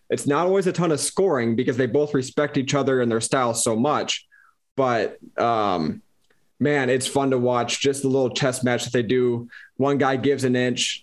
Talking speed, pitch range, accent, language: 205 wpm, 120-145 Hz, American, English